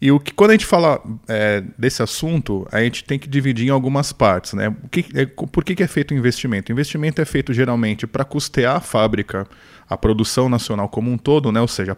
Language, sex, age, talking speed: Portuguese, male, 20-39, 230 wpm